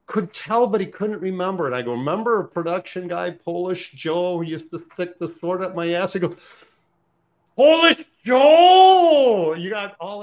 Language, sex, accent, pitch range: English, male, American, 125-175 Hz